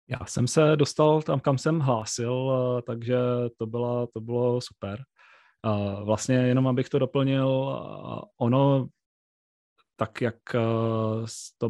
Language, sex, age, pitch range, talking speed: Czech, male, 30-49, 115-130 Hz, 120 wpm